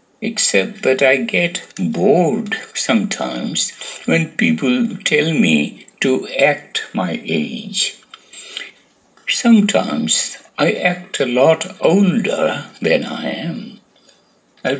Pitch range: 185-230 Hz